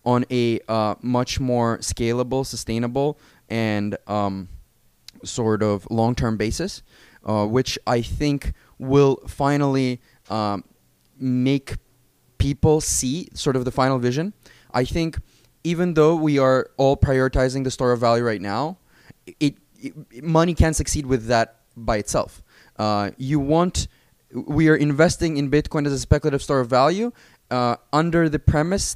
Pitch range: 115-140 Hz